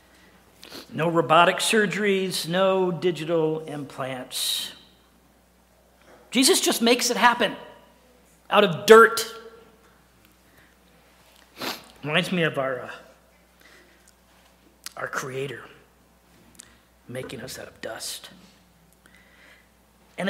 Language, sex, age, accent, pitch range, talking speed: English, male, 50-69, American, 155-235 Hz, 75 wpm